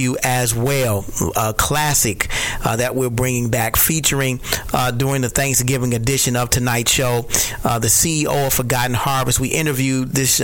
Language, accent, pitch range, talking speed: English, American, 120-135 Hz, 155 wpm